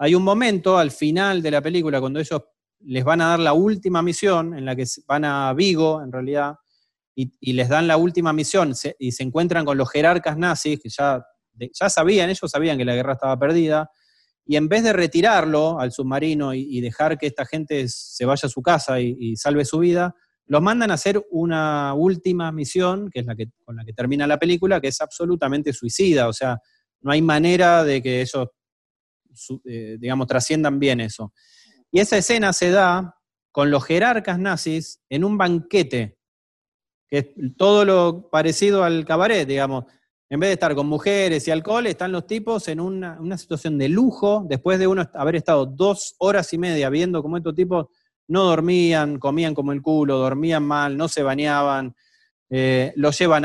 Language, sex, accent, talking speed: Spanish, male, Argentinian, 195 wpm